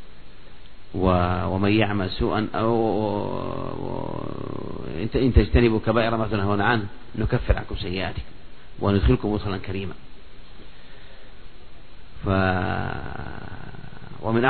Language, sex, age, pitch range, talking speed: Arabic, male, 40-59, 95-110 Hz, 70 wpm